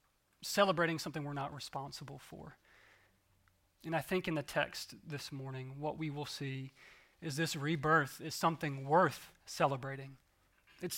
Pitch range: 140-165 Hz